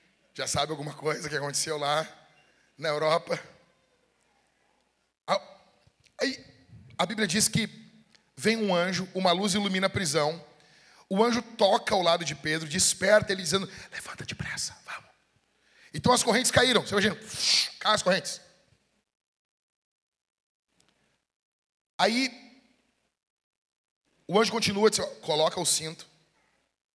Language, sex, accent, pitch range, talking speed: Portuguese, male, Brazilian, 155-210 Hz, 115 wpm